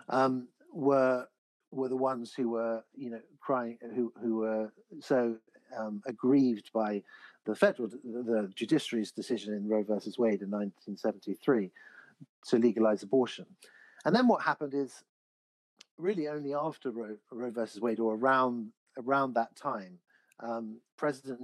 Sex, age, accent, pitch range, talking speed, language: male, 50-69, British, 110-130 Hz, 140 wpm, English